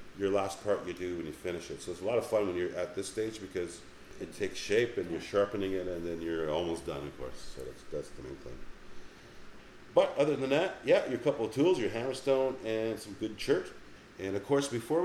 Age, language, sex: 40-59, English, male